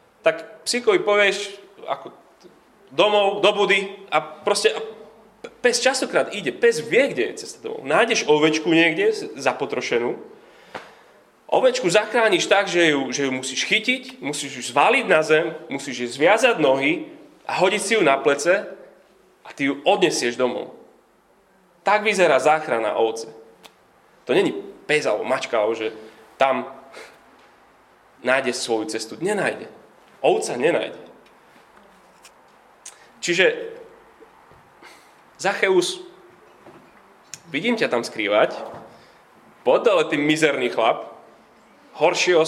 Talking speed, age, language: 110 wpm, 30-49, Slovak